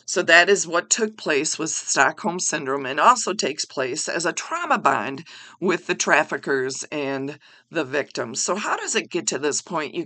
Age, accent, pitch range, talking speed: 50-69, American, 170-245 Hz, 190 wpm